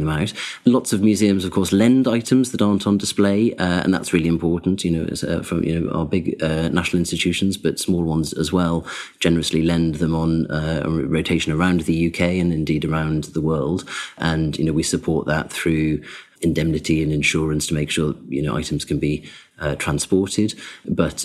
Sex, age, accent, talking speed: male, 30-49, British, 200 wpm